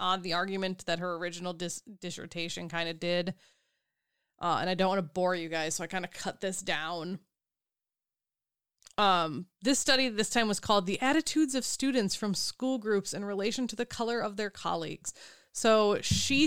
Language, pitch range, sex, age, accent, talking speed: English, 185-225 Hz, female, 20-39, American, 180 wpm